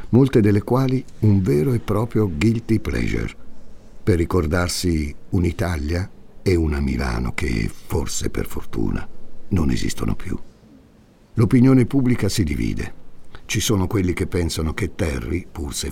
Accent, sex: native, male